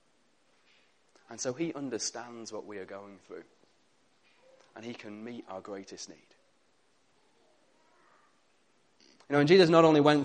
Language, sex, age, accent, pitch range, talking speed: English, male, 30-49, British, 130-185 Hz, 135 wpm